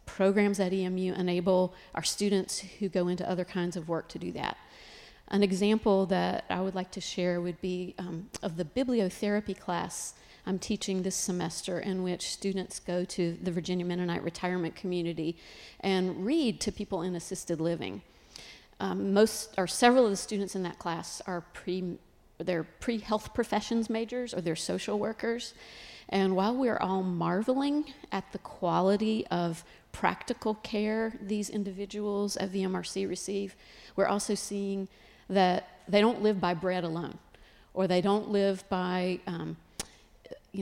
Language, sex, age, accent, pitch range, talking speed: English, female, 40-59, American, 180-205 Hz, 155 wpm